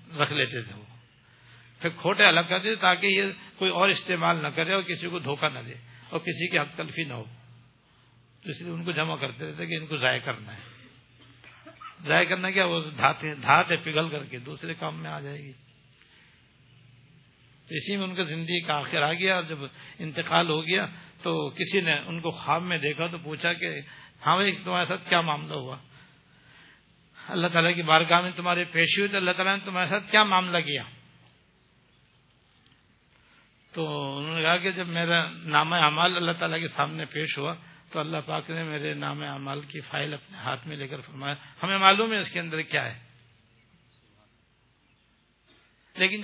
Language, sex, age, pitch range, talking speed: Urdu, male, 60-79, 130-175 Hz, 185 wpm